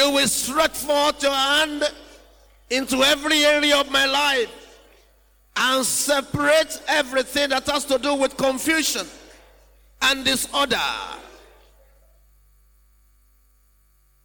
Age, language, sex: 50-69, English, male